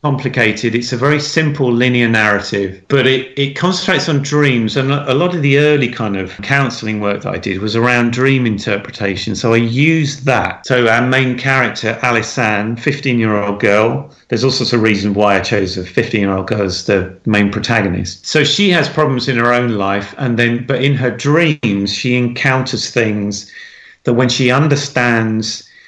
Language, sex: English, male